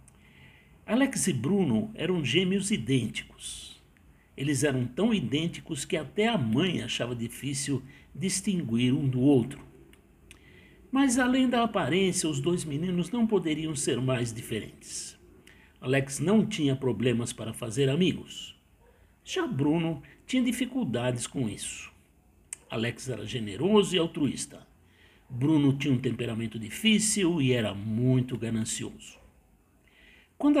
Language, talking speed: Portuguese, 120 wpm